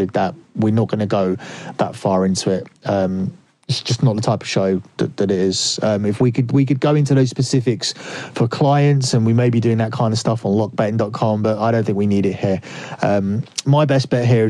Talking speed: 240 wpm